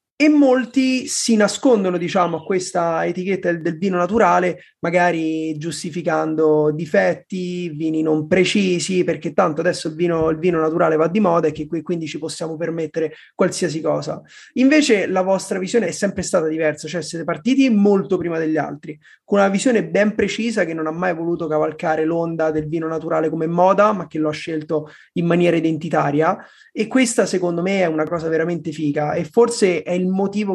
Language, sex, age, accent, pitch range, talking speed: Italian, male, 30-49, native, 160-195 Hz, 175 wpm